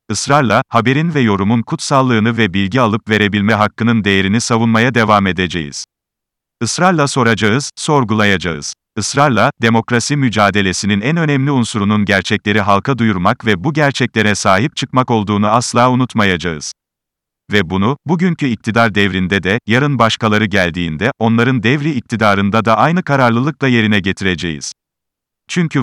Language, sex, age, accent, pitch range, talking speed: Turkish, male, 40-59, native, 105-135 Hz, 120 wpm